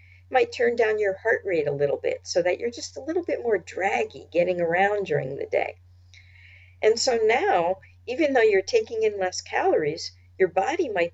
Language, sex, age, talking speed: English, female, 50-69, 195 wpm